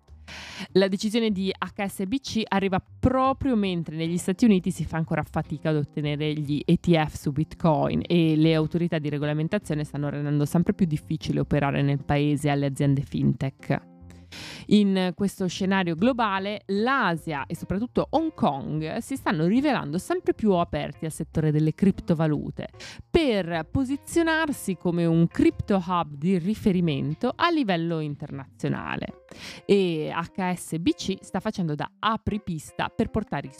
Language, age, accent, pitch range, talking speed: Italian, 20-39, native, 150-200 Hz, 135 wpm